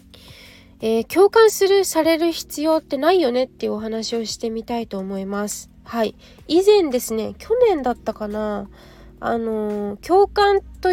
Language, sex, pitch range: Japanese, female, 210-295 Hz